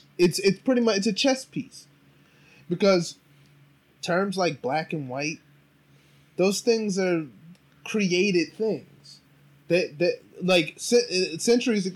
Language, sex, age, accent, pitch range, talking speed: English, male, 20-39, American, 145-185 Hz, 115 wpm